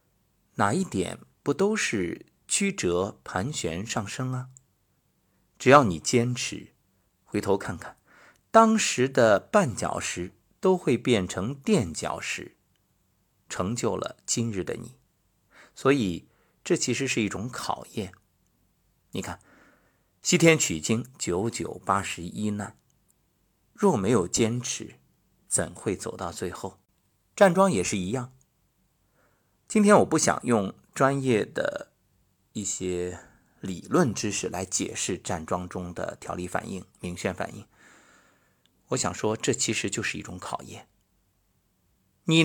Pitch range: 95-145 Hz